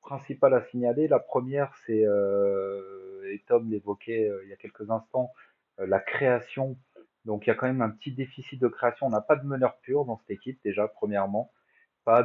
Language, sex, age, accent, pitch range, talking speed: French, male, 30-49, French, 100-125 Hz, 205 wpm